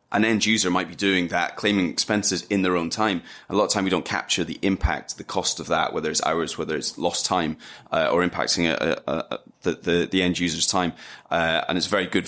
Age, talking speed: 20-39, 245 wpm